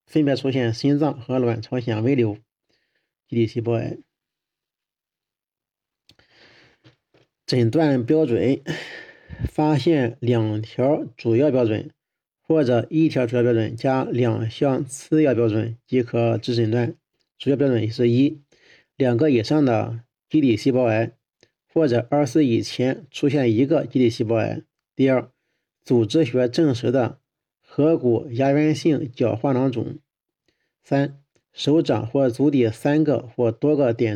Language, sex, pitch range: Chinese, male, 120-150 Hz